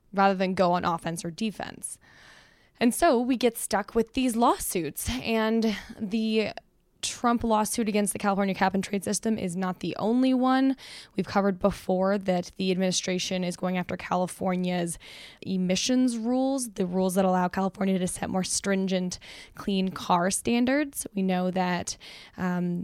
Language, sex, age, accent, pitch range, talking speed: English, female, 10-29, American, 185-215 Hz, 155 wpm